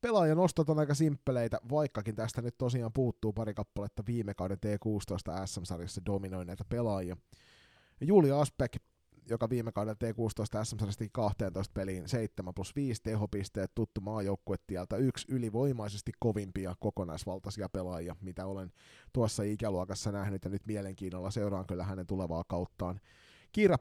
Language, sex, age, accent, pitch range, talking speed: Finnish, male, 30-49, native, 100-125 Hz, 130 wpm